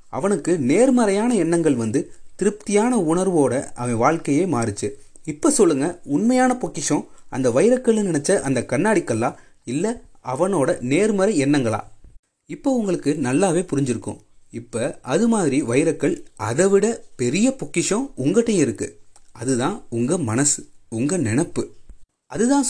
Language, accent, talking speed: Tamil, native, 110 wpm